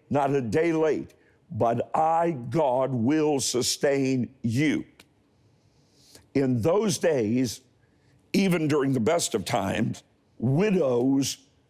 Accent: American